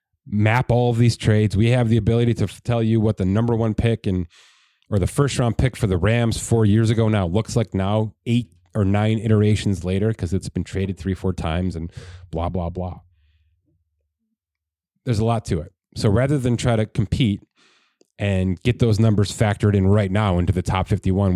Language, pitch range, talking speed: English, 95-120 Hz, 205 wpm